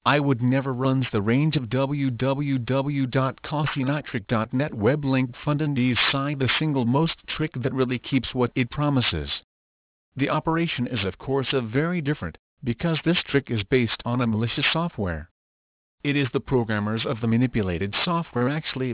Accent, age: American, 50-69